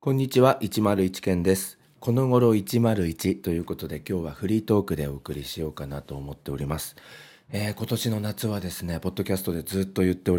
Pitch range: 85-115 Hz